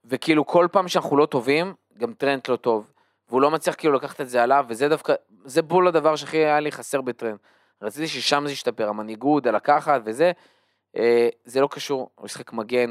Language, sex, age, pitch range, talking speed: Hebrew, male, 20-39, 120-145 Hz, 190 wpm